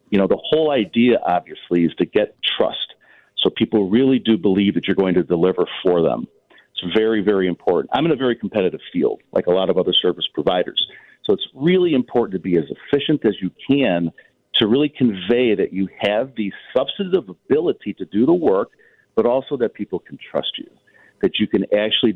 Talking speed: 200 wpm